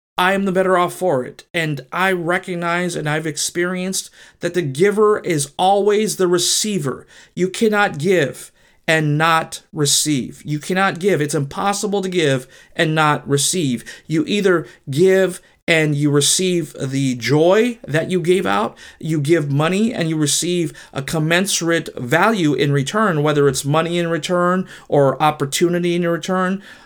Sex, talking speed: male, 150 wpm